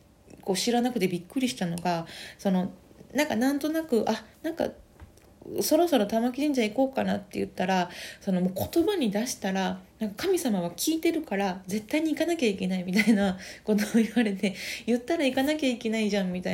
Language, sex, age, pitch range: Japanese, female, 20-39, 185-245 Hz